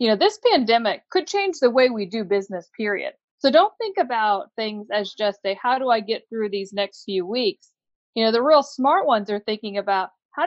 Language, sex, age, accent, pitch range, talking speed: English, female, 40-59, American, 200-245 Hz, 225 wpm